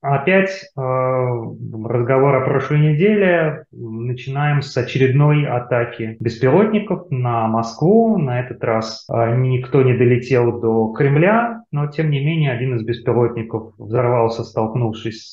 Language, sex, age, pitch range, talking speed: Russian, male, 30-49, 115-140 Hz, 115 wpm